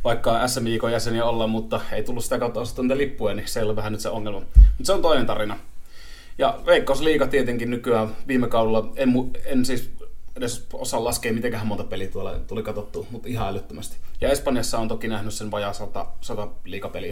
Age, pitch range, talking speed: 30-49, 100-115 Hz, 195 wpm